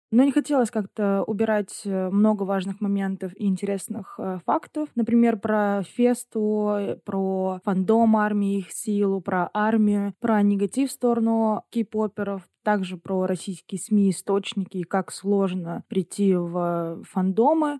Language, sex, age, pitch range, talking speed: Russian, female, 20-39, 195-225 Hz, 130 wpm